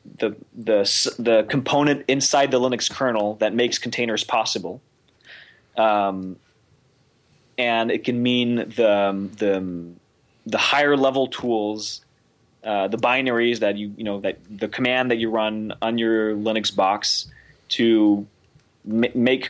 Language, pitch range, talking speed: English, 110-130 Hz, 130 wpm